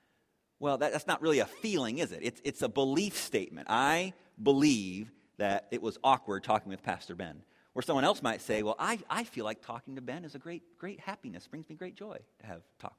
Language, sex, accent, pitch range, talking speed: English, male, American, 105-140 Hz, 230 wpm